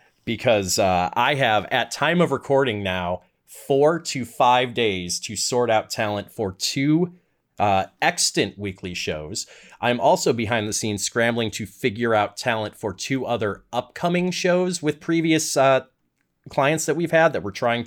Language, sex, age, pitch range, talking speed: English, male, 30-49, 100-135 Hz, 160 wpm